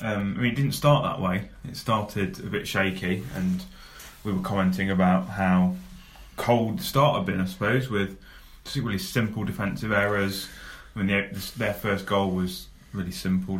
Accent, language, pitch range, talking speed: British, English, 95-115 Hz, 180 wpm